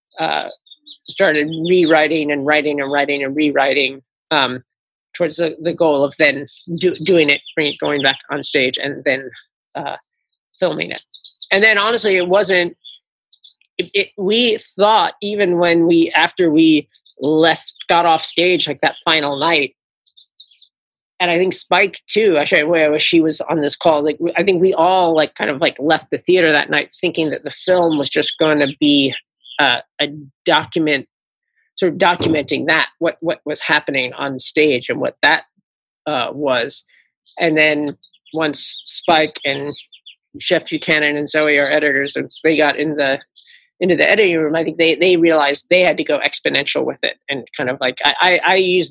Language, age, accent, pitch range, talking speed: English, 30-49, American, 145-175 Hz, 175 wpm